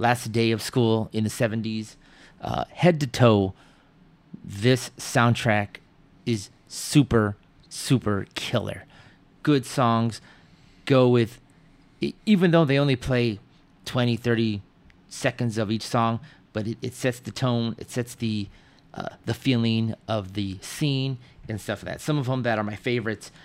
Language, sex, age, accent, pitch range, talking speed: English, male, 30-49, American, 105-125 Hz, 150 wpm